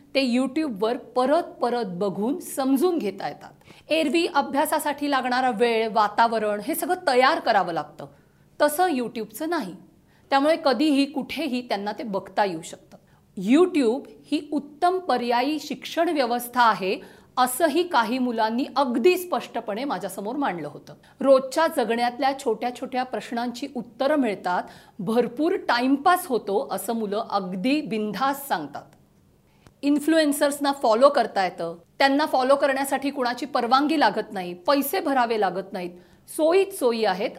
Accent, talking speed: native, 125 wpm